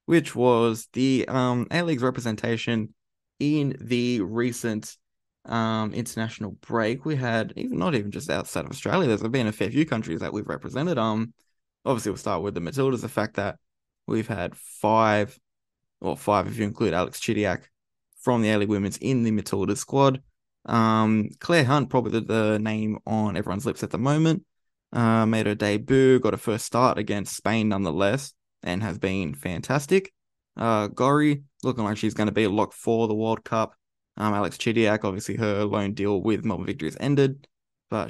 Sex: male